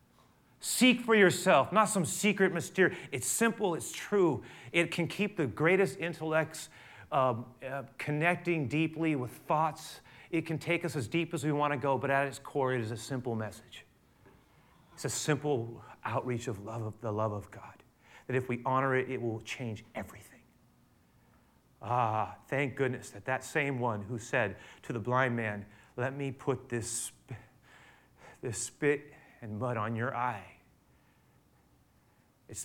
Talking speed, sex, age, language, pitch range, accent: 160 wpm, male, 30-49, English, 115-150 Hz, American